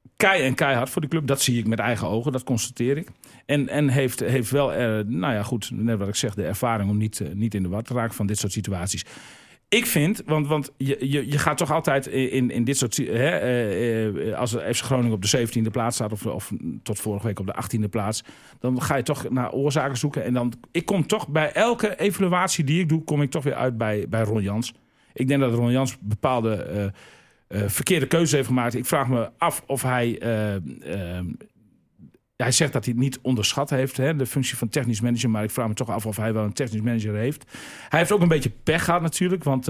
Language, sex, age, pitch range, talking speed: Dutch, male, 40-59, 110-140 Hz, 240 wpm